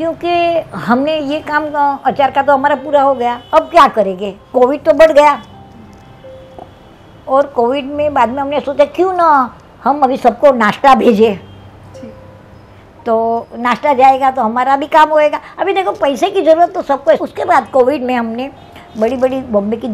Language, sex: Hindi, male